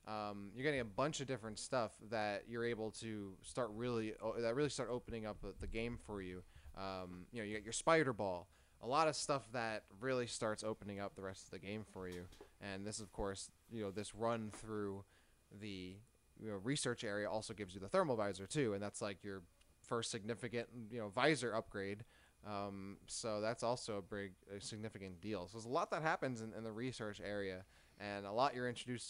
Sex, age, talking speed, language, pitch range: male, 20-39, 210 wpm, English, 100-125 Hz